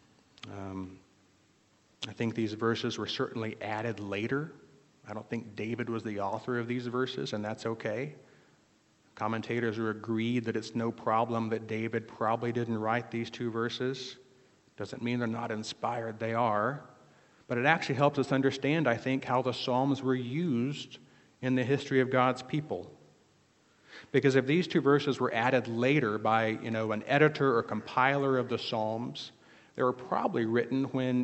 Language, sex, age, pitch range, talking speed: English, male, 40-59, 110-130 Hz, 165 wpm